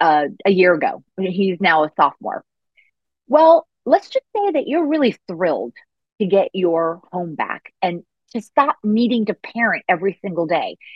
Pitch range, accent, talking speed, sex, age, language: 185-245 Hz, American, 165 wpm, female, 30-49, English